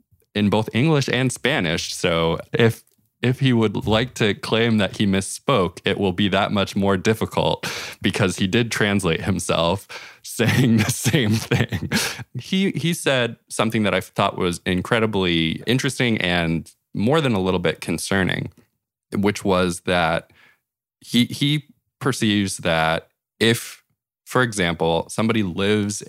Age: 20-39